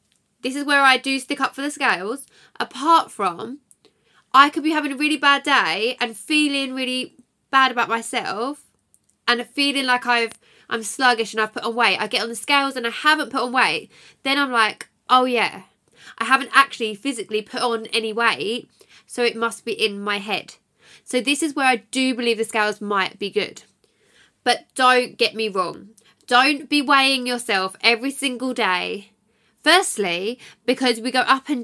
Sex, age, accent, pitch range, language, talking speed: female, 10-29, British, 215-260 Hz, English, 185 wpm